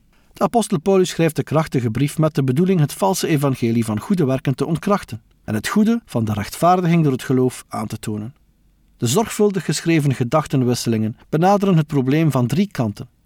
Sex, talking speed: male, 175 wpm